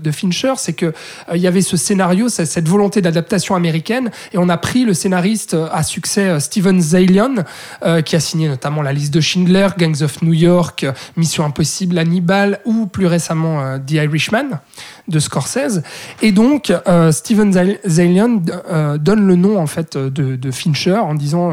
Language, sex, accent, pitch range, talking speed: French, male, French, 165-205 Hz, 185 wpm